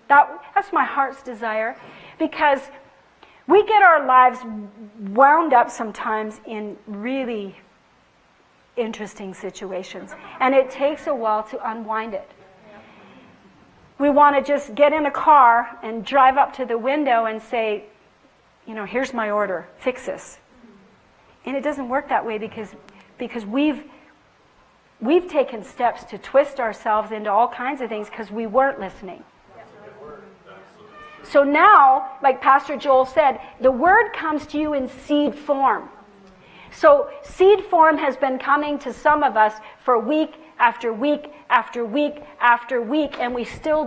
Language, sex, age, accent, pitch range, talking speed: English, female, 40-59, American, 225-300 Hz, 145 wpm